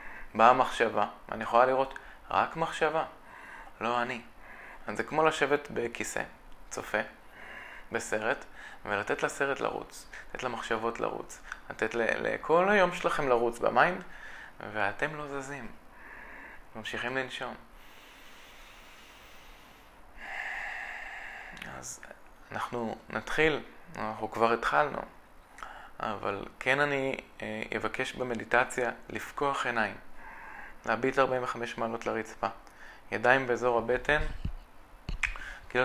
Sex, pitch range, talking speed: male, 115-135 Hz, 90 wpm